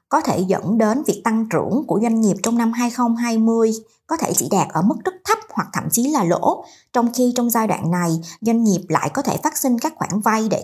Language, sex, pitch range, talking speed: Vietnamese, male, 195-260 Hz, 245 wpm